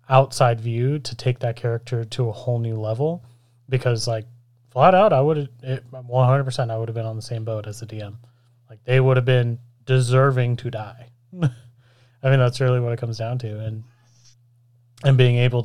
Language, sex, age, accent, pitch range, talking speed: English, male, 30-49, American, 115-130 Hz, 190 wpm